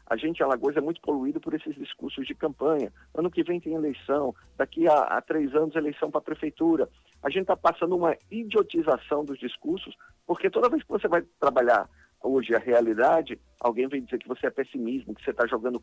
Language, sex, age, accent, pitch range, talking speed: Portuguese, male, 50-69, Brazilian, 115-155 Hz, 210 wpm